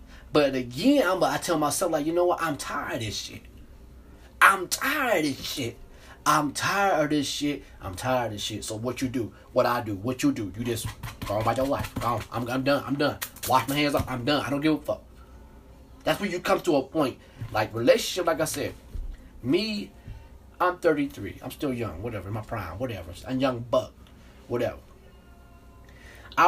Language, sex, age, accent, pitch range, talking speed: English, male, 20-39, American, 95-150 Hz, 205 wpm